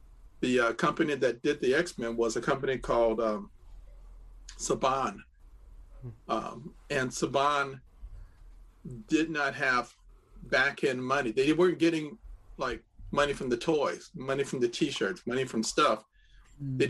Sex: male